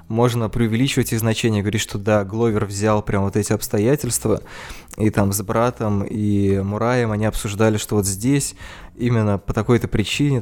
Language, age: Russian, 20-39